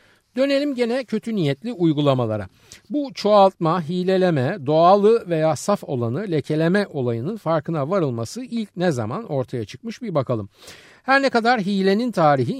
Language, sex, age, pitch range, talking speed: Turkish, male, 50-69, 120-195 Hz, 135 wpm